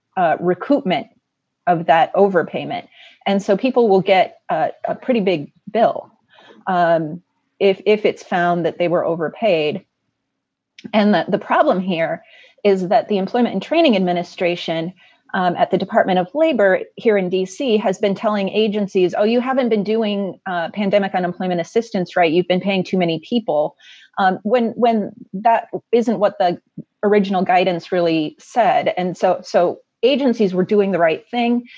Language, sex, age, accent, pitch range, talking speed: English, female, 30-49, American, 180-220 Hz, 160 wpm